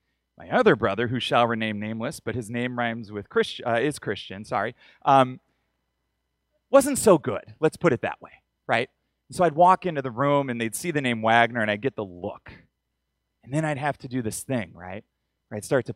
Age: 30-49